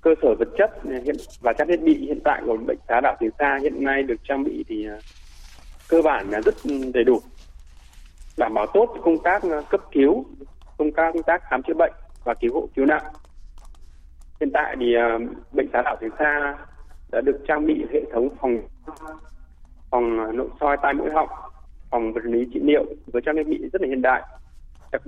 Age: 20-39